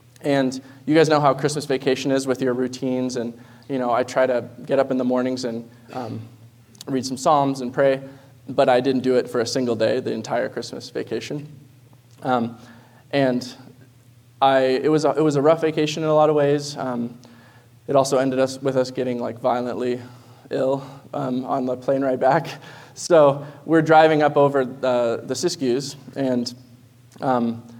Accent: American